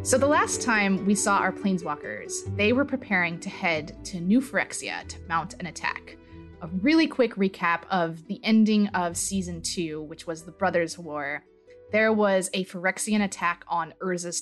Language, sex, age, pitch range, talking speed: English, female, 20-39, 170-220 Hz, 175 wpm